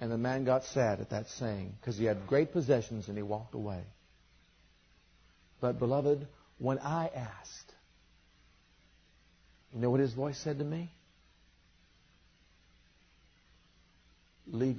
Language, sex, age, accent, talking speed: English, male, 50-69, American, 125 wpm